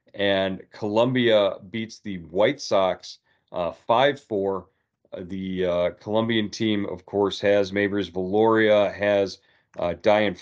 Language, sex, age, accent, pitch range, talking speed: English, male, 40-59, American, 95-110 Hz, 115 wpm